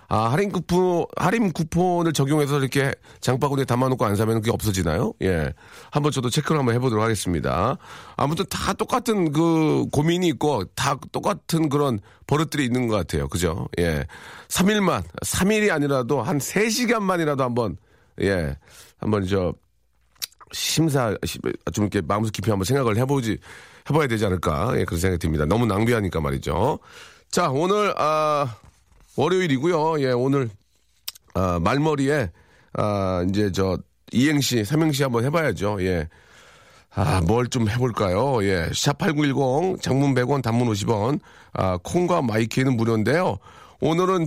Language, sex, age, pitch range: Korean, male, 40-59, 100-150 Hz